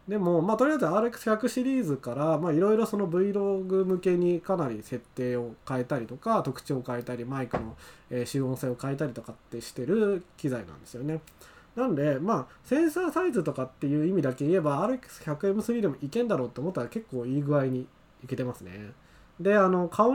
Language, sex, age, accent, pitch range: Japanese, male, 20-39, native, 125-190 Hz